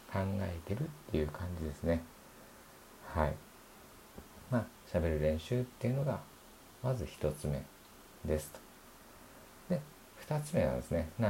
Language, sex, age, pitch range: Japanese, male, 50-69, 85-125 Hz